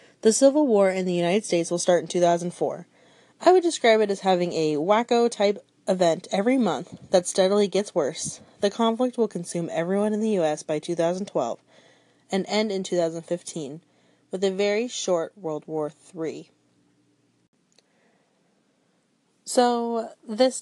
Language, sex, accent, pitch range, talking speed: English, female, American, 165-220 Hz, 145 wpm